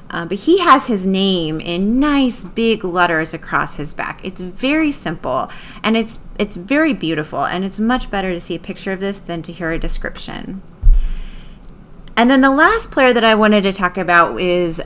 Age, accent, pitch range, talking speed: 30-49, American, 165-210 Hz, 195 wpm